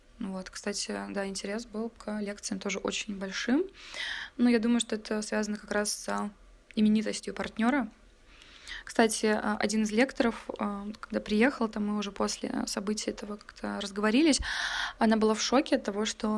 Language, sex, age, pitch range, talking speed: Russian, female, 20-39, 205-240 Hz, 150 wpm